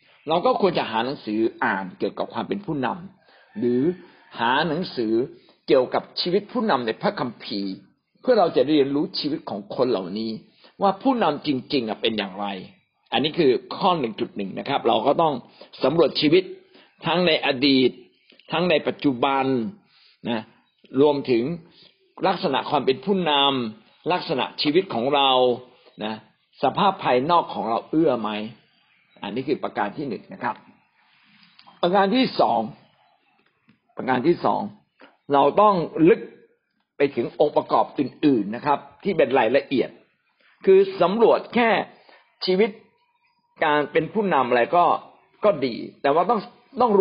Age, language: 60-79, Thai